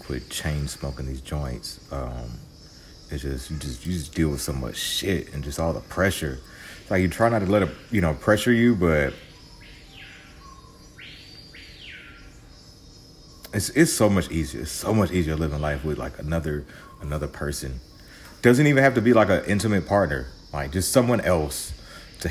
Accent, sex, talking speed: American, male, 175 wpm